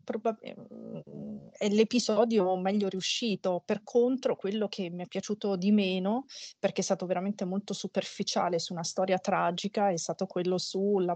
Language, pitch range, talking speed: Italian, 170-195 Hz, 145 wpm